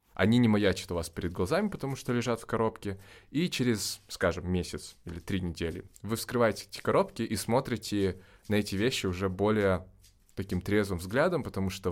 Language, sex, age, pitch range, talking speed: Russian, male, 20-39, 90-110 Hz, 175 wpm